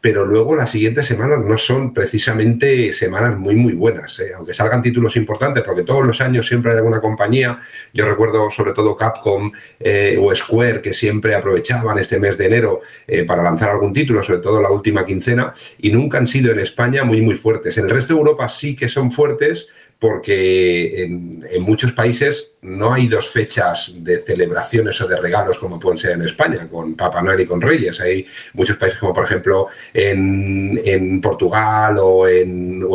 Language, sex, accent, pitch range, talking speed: Spanish, male, Spanish, 100-125 Hz, 190 wpm